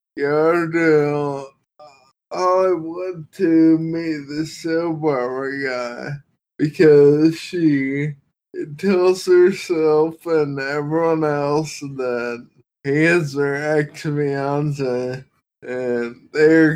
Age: 20-39